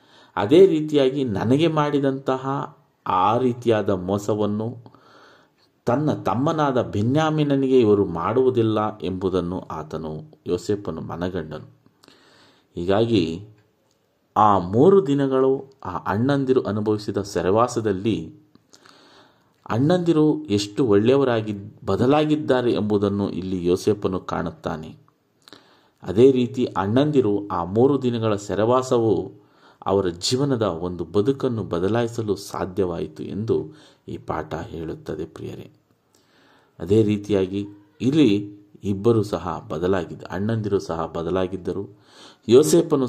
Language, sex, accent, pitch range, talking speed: Kannada, male, native, 95-125 Hz, 85 wpm